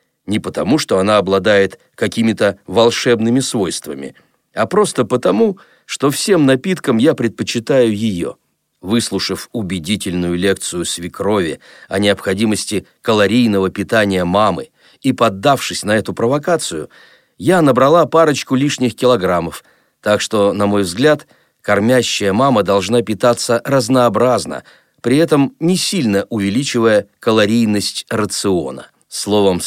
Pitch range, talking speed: 100-125 Hz, 110 wpm